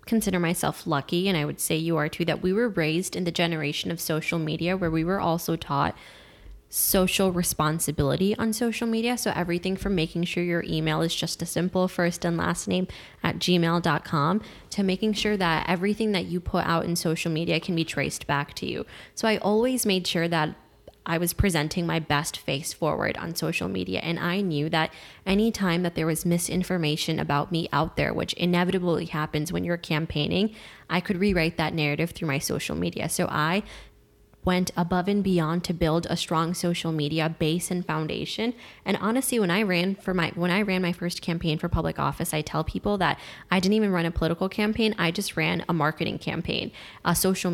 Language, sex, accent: English, female, American